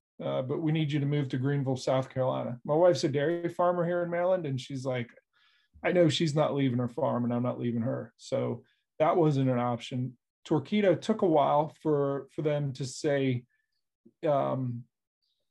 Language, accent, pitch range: English, American, 125-155 Hz